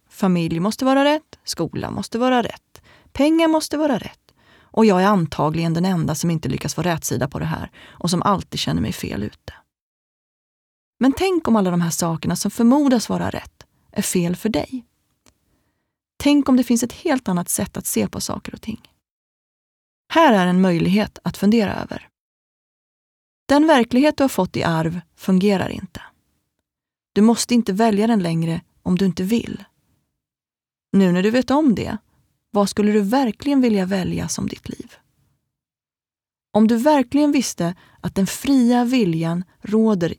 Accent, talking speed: Swedish, 165 wpm